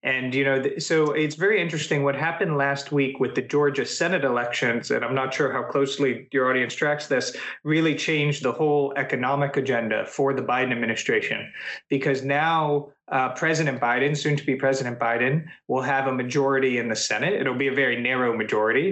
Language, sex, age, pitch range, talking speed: Polish, male, 30-49, 125-145 Hz, 185 wpm